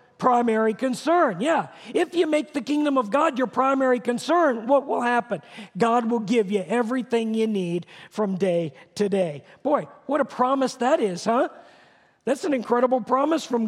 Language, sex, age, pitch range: English, male, 50-69, 200-260 Hz